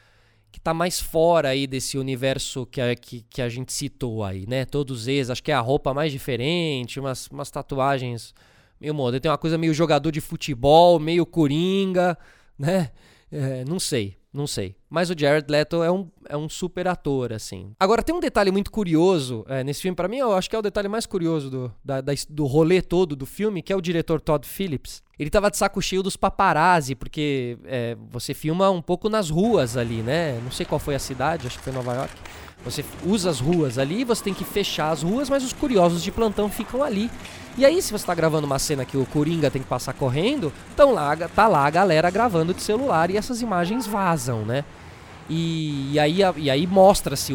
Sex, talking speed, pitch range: male, 205 wpm, 135-195 Hz